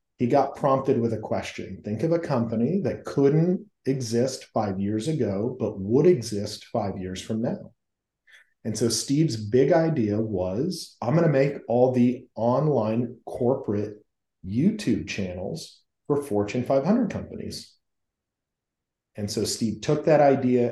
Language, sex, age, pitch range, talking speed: English, male, 40-59, 105-140 Hz, 140 wpm